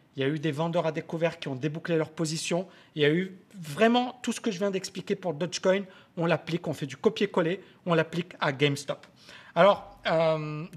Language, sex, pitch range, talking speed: French, male, 155-190 Hz, 210 wpm